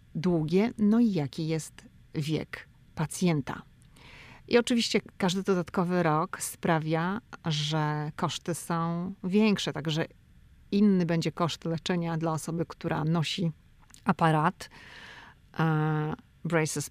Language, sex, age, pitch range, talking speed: Polish, female, 40-59, 155-180 Hz, 100 wpm